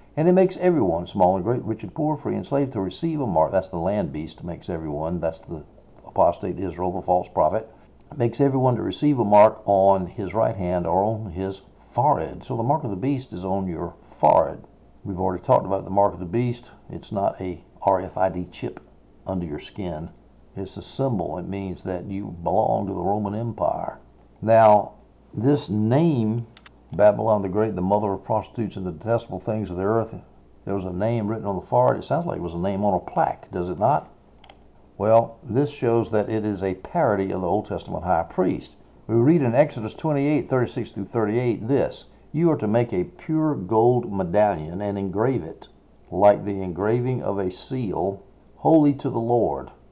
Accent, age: American, 60-79